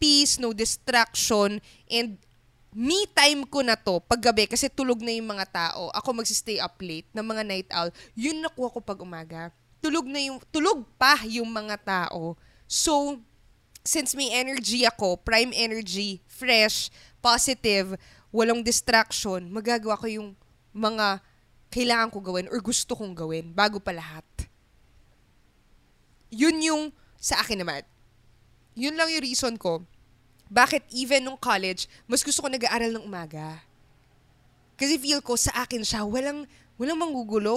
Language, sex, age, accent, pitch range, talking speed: Filipino, female, 20-39, native, 195-285 Hz, 145 wpm